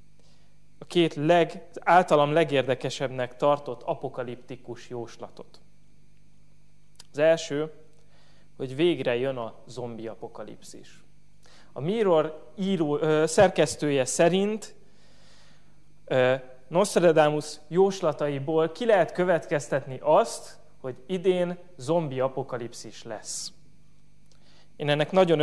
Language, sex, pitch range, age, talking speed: Hungarian, male, 135-165 Hz, 30-49, 85 wpm